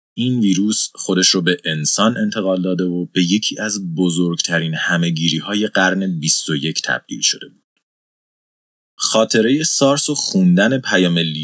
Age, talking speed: 30-49, 125 wpm